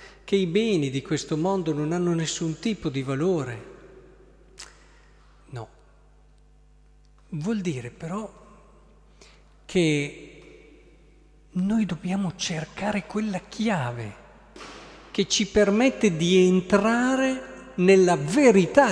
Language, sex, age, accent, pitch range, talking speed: Italian, male, 50-69, native, 145-200 Hz, 90 wpm